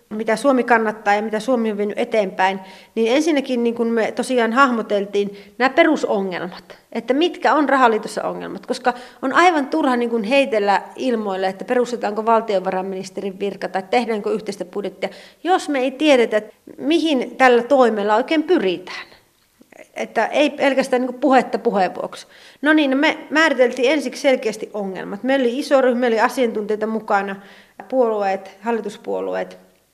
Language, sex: Finnish, female